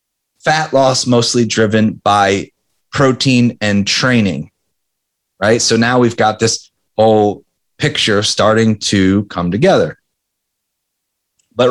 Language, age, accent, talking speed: English, 30-49, American, 110 wpm